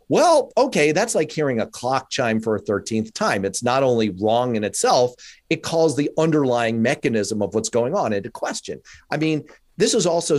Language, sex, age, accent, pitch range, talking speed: English, male, 40-59, American, 115-155 Hz, 195 wpm